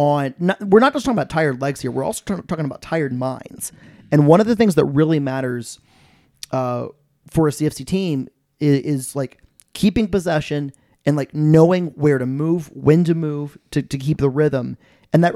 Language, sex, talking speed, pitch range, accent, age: English, male, 200 wpm, 135-170 Hz, American, 30-49